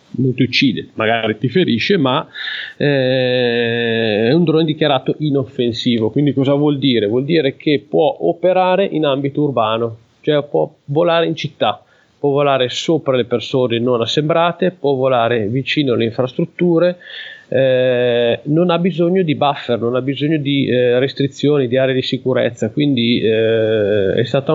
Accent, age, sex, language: native, 30-49, male, Italian